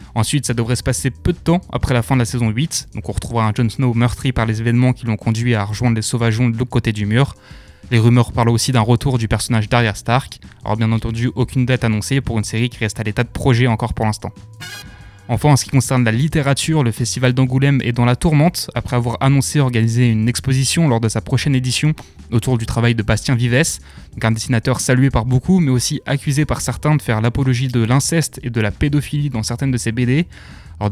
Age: 20-39